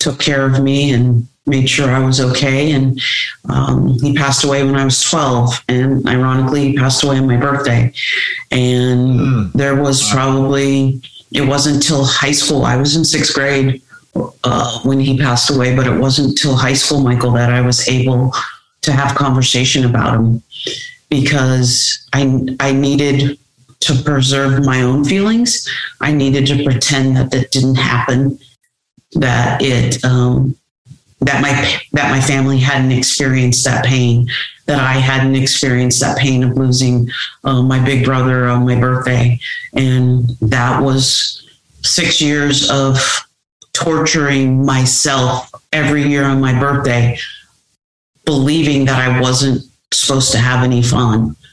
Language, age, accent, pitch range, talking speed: English, 40-59, American, 125-140 Hz, 150 wpm